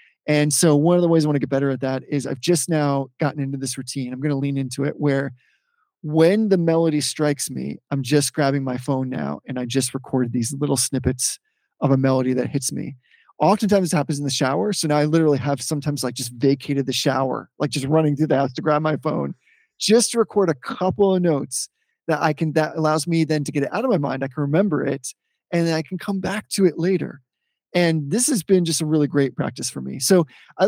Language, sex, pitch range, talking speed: English, male, 140-170 Hz, 245 wpm